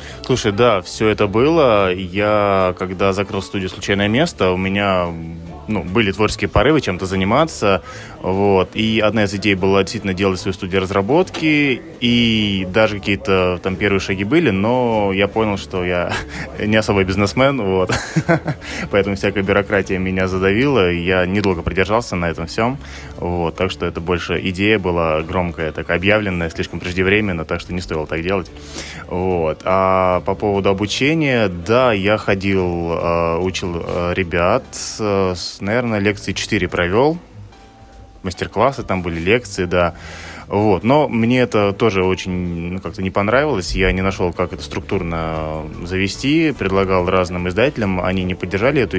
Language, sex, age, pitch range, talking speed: Russian, male, 20-39, 90-105 Hz, 145 wpm